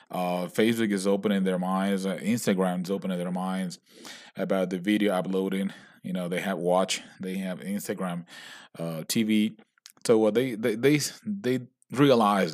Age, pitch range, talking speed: 30-49, 95-130 Hz, 165 wpm